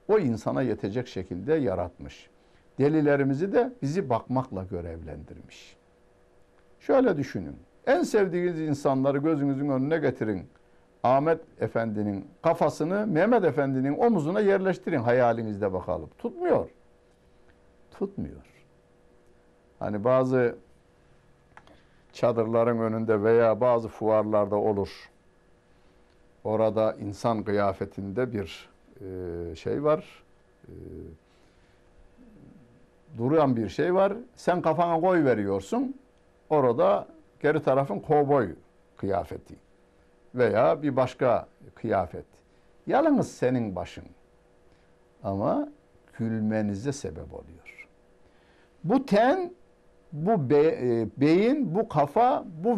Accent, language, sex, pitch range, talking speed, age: native, Turkish, male, 95-155 Hz, 85 wpm, 60-79